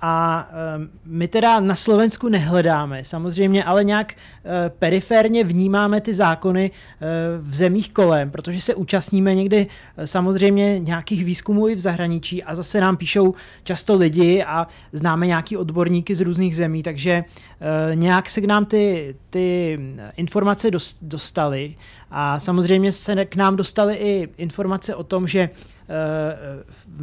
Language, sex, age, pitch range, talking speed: Czech, male, 30-49, 160-195 Hz, 135 wpm